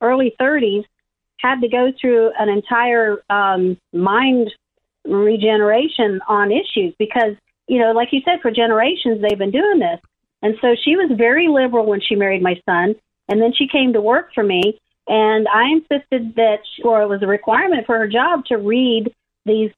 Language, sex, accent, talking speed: English, female, American, 180 wpm